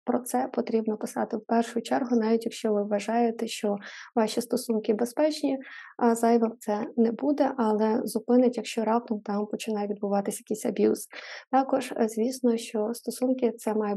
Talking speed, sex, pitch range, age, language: 145 wpm, female, 215-240 Hz, 20-39, Ukrainian